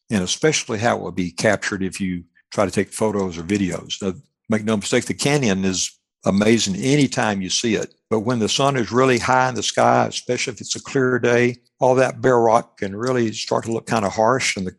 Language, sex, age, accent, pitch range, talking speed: English, male, 60-79, American, 100-120 Hz, 230 wpm